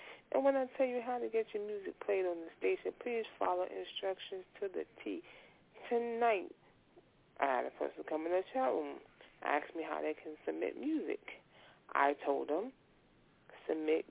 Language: English